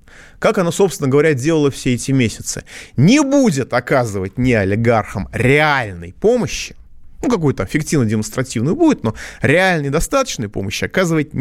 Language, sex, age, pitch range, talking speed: Russian, male, 30-49, 95-155 Hz, 130 wpm